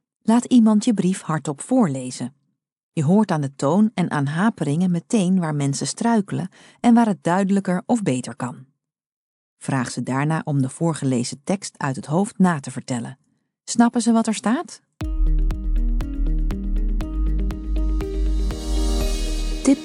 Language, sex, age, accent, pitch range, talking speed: Dutch, female, 40-59, Dutch, 135-215 Hz, 135 wpm